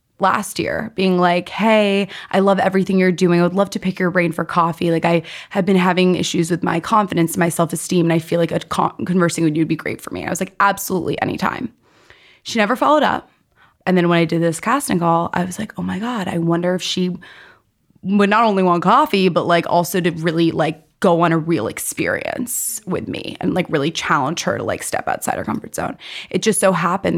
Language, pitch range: English, 170-190 Hz